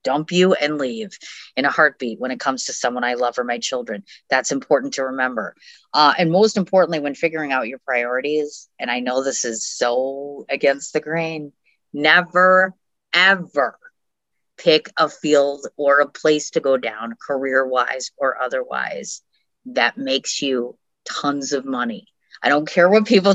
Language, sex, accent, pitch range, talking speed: English, female, American, 130-185 Hz, 165 wpm